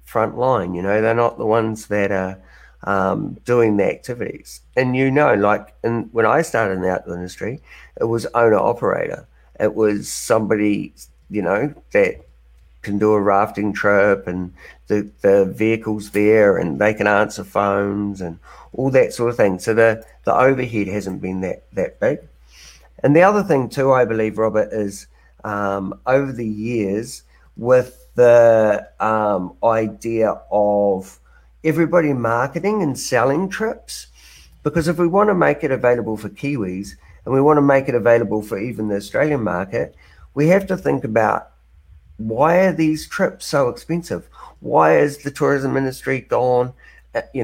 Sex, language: male, English